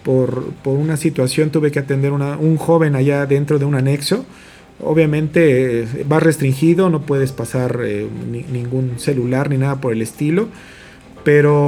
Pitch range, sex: 130-165 Hz, male